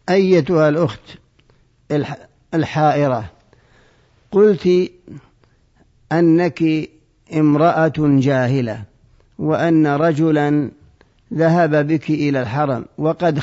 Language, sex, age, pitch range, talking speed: Arabic, male, 50-69, 140-165 Hz, 65 wpm